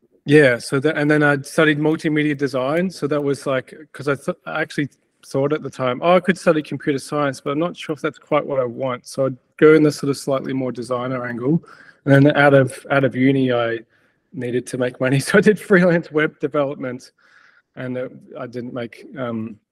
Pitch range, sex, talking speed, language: 125-150 Hz, male, 220 wpm, English